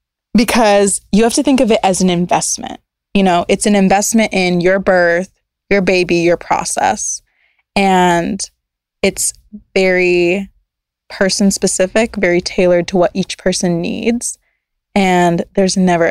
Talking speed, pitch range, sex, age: 140 wpm, 175-205 Hz, female, 20-39